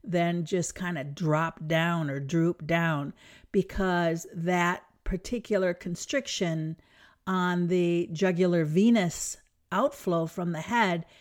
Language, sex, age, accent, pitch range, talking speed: English, female, 50-69, American, 170-215 Hz, 110 wpm